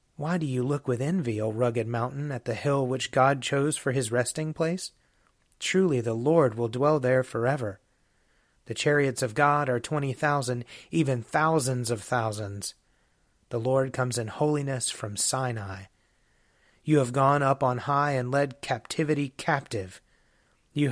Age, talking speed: 30-49, 160 wpm